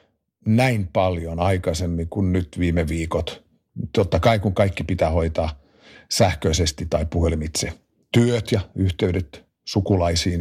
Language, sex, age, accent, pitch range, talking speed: Finnish, male, 50-69, native, 85-105 Hz, 115 wpm